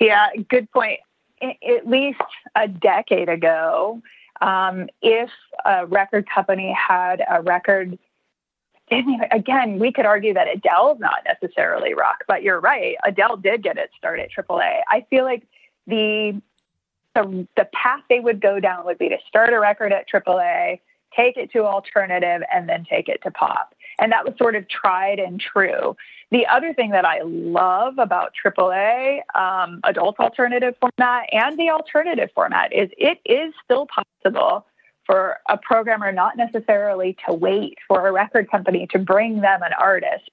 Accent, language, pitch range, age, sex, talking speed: American, English, 190-255 Hz, 30-49, female, 165 wpm